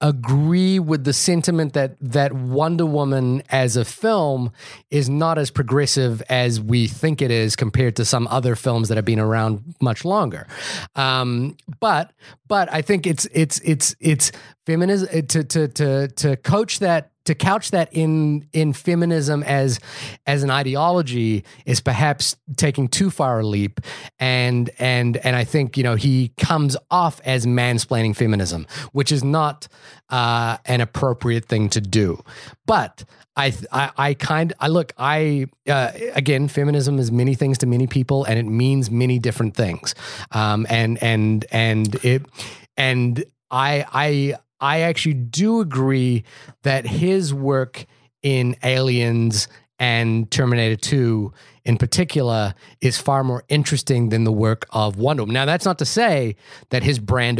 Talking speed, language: 155 wpm, English